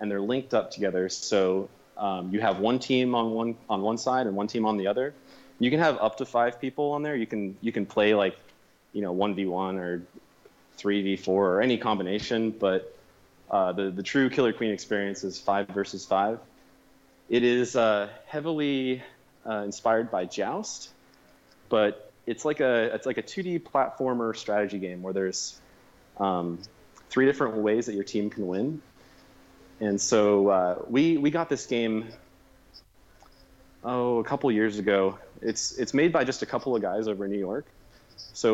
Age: 30-49